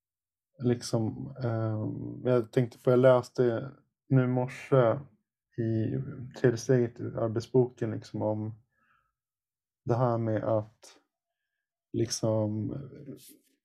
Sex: male